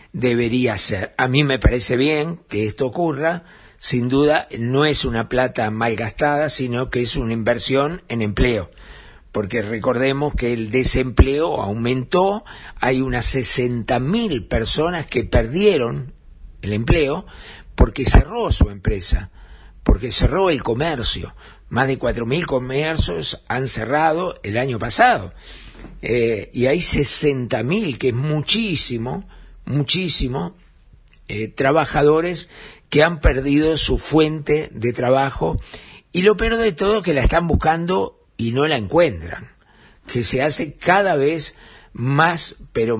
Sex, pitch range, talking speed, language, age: male, 115-155 Hz, 130 wpm, Spanish, 50-69